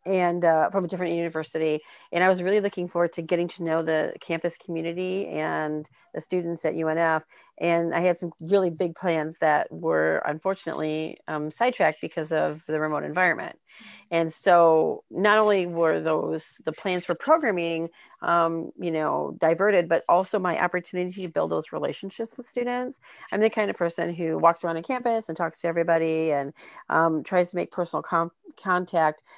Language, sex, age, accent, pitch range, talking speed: English, female, 40-59, American, 160-185 Hz, 180 wpm